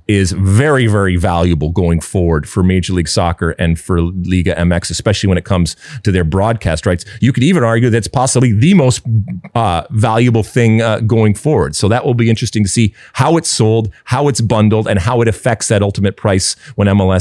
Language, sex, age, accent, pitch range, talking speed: English, male, 30-49, American, 90-120 Hz, 200 wpm